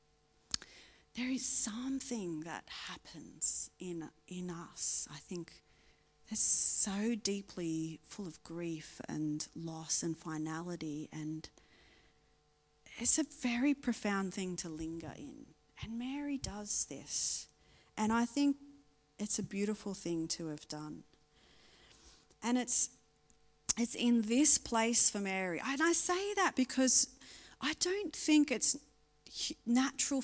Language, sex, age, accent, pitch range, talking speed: English, female, 40-59, Australian, 160-235 Hz, 120 wpm